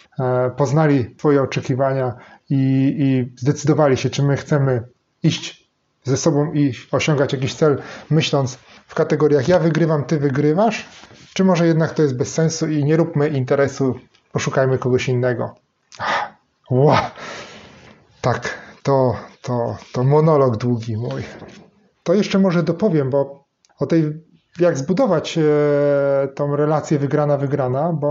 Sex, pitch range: male, 135-165 Hz